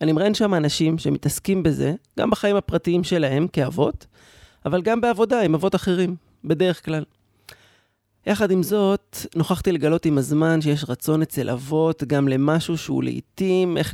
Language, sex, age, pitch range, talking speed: Hebrew, male, 30-49, 140-185 Hz, 150 wpm